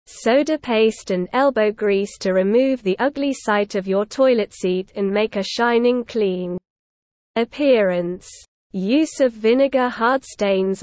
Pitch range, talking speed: 195-250 Hz, 140 wpm